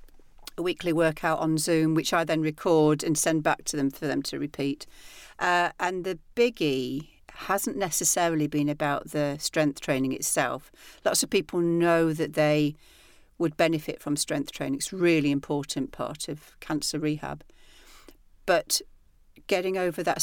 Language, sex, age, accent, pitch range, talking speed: English, female, 50-69, British, 150-175 Hz, 150 wpm